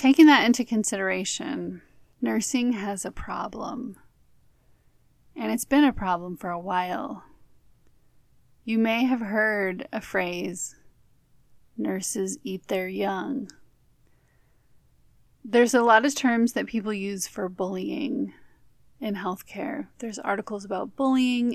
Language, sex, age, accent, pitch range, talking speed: English, female, 30-49, American, 195-240 Hz, 115 wpm